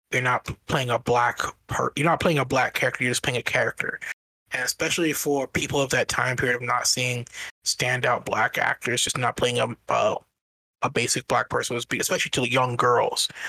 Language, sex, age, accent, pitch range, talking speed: English, male, 20-39, American, 120-150 Hz, 195 wpm